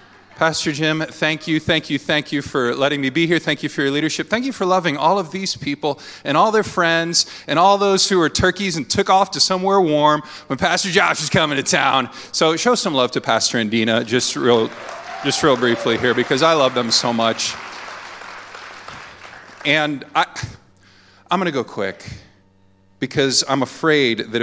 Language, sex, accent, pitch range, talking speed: English, male, American, 110-145 Hz, 195 wpm